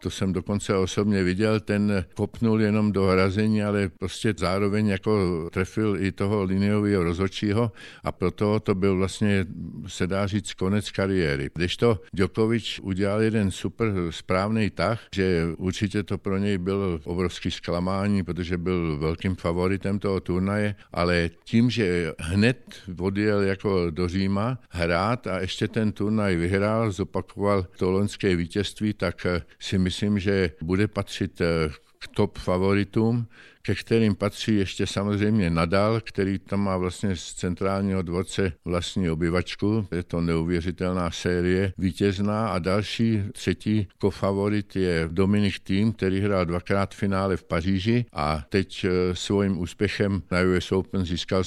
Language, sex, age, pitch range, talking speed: Slovak, male, 50-69, 90-105 Hz, 140 wpm